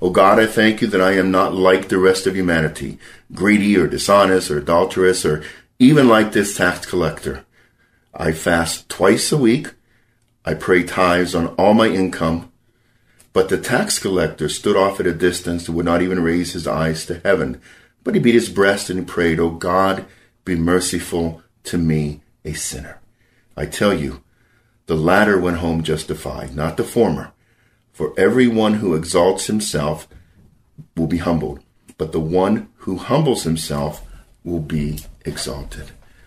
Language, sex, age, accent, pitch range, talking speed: Ukrainian, male, 50-69, American, 80-100 Hz, 165 wpm